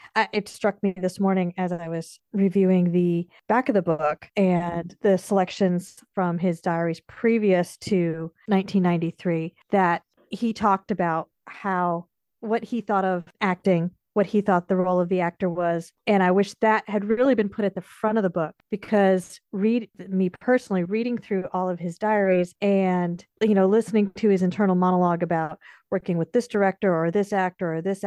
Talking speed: 180 wpm